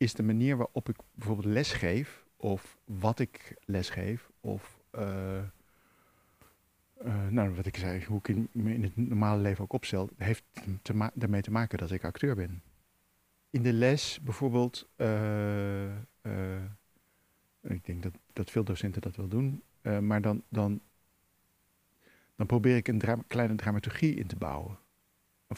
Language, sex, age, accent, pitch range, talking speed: Dutch, male, 50-69, Dutch, 95-115 Hz, 160 wpm